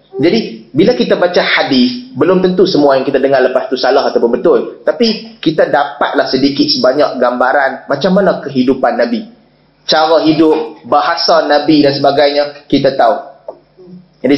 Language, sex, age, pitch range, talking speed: Malay, male, 20-39, 145-220 Hz, 145 wpm